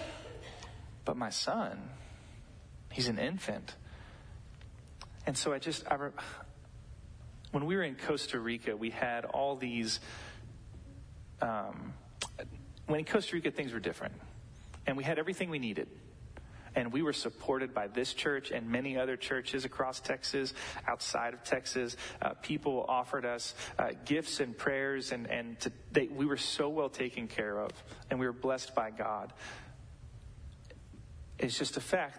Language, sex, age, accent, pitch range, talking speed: English, male, 30-49, American, 115-135 Hz, 145 wpm